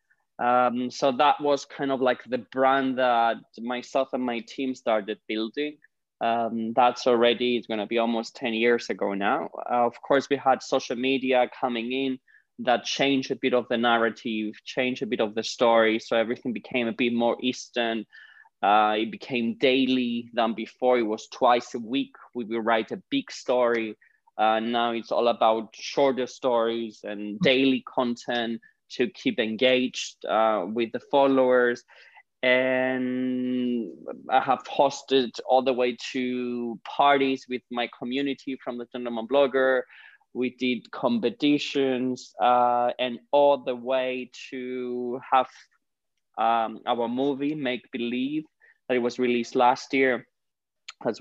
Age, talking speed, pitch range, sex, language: 20-39, 150 wpm, 115-130 Hz, male, English